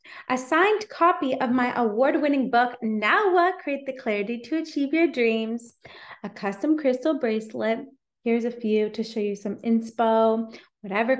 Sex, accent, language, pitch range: female, American, English, 210-275 Hz